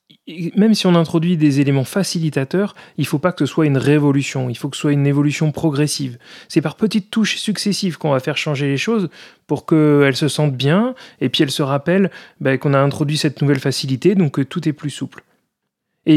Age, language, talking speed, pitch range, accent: 30-49, French, 220 wpm, 140-175 Hz, French